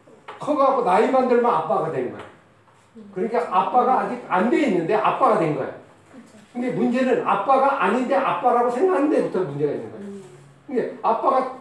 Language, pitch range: Korean, 150-230 Hz